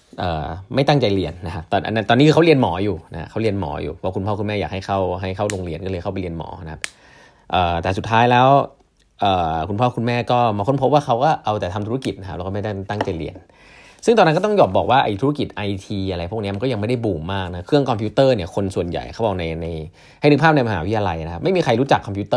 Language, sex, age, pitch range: Thai, male, 20-39, 95-120 Hz